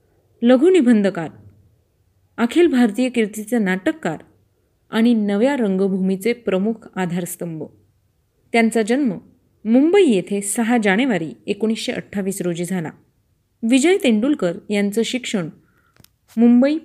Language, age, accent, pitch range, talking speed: Marathi, 30-49, native, 185-245 Hz, 85 wpm